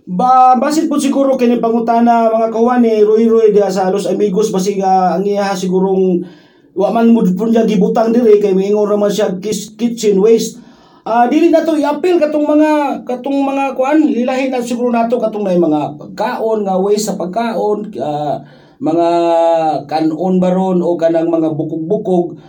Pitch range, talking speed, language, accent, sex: 180-235 Hz, 165 wpm, Filipino, native, male